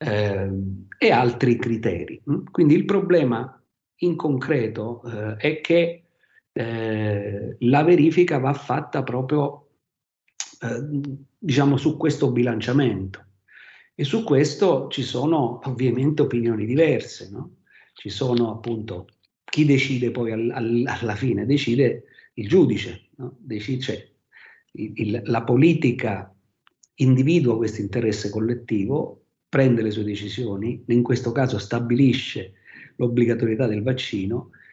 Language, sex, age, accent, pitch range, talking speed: Italian, male, 50-69, native, 110-140 Hz, 100 wpm